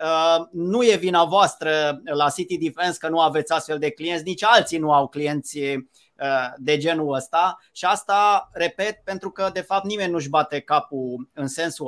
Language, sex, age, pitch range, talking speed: Romanian, male, 30-49, 155-190 Hz, 170 wpm